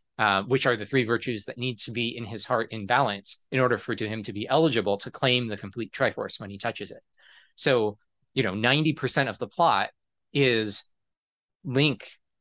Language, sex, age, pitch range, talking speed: English, male, 20-39, 105-130 Hz, 195 wpm